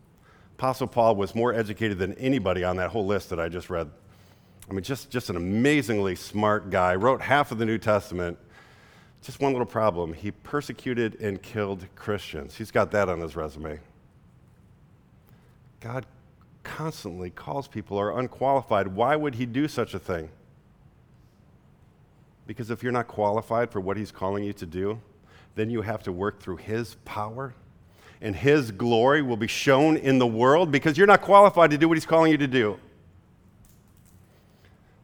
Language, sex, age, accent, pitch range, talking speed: English, male, 50-69, American, 95-125 Hz, 170 wpm